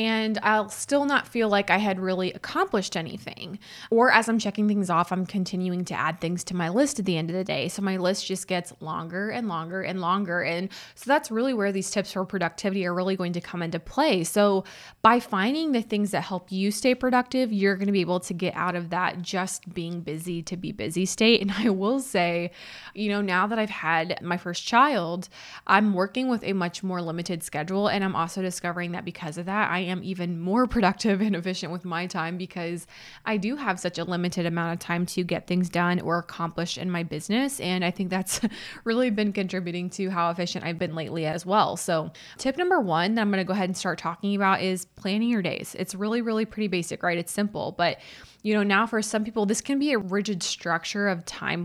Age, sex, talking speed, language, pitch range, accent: 20-39, female, 230 wpm, English, 175-215 Hz, American